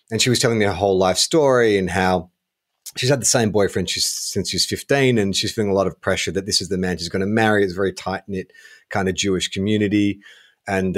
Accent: Australian